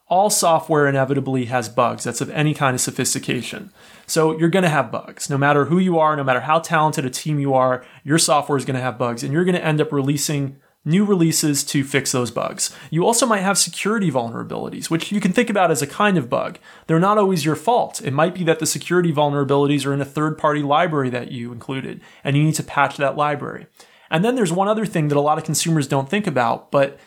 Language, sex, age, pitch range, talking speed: English, male, 30-49, 140-175 Hz, 240 wpm